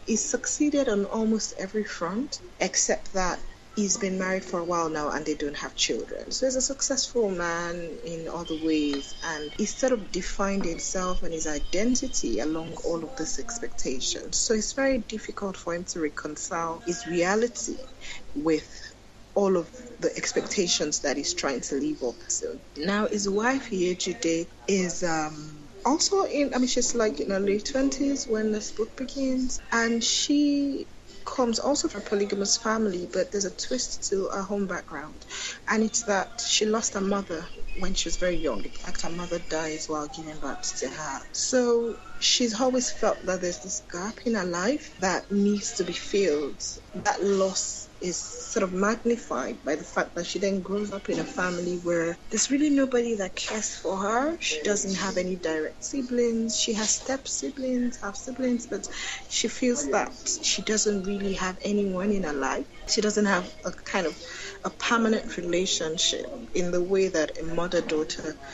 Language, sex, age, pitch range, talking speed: English, female, 30-49, 175-240 Hz, 175 wpm